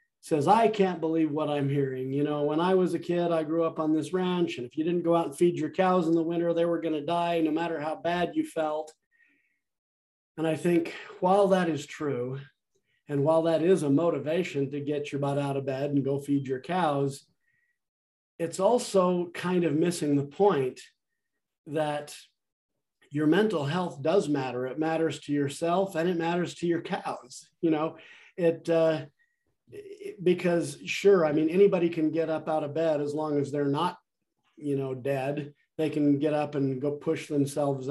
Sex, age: male, 40-59